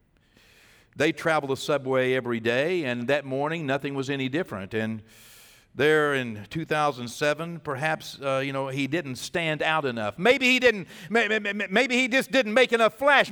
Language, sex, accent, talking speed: English, male, American, 165 wpm